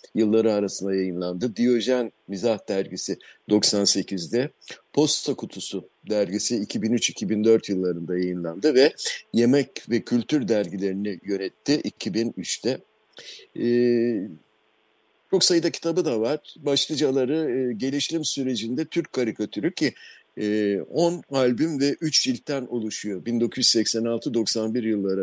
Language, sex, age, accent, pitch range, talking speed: Turkish, male, 60-79, native, 100-140 Hz, 100 wpm